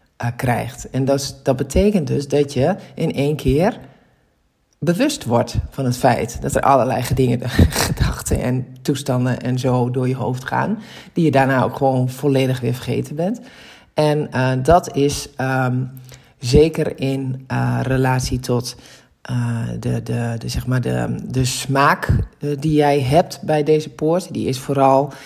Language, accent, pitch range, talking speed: Dutch, Dutch, 125-145 Hz, 145 wpm